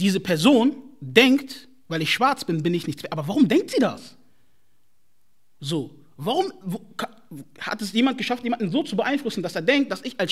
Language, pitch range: German, 185-270 Hz